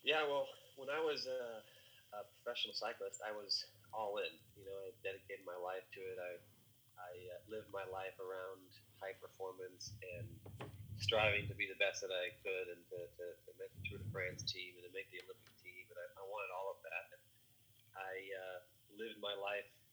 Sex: male